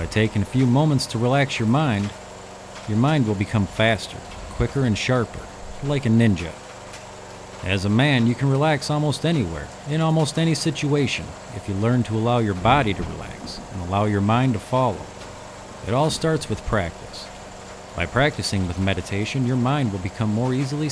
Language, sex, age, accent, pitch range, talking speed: English, male, 40-59, American, 95-130 Hz, 180 wpm